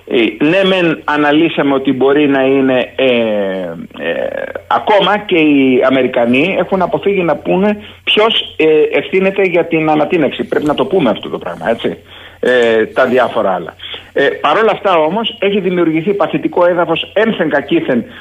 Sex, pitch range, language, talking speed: male, 140-210 Hz, Greek, 135 wpm